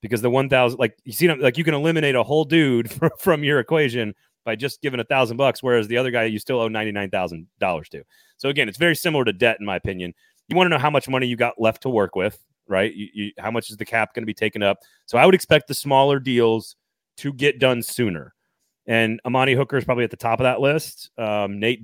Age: 30-49